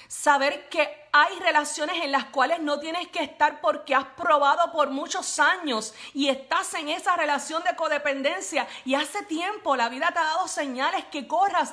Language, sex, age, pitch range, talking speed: Spanish, female, 40-59, 225-300 Hz, 180 wpm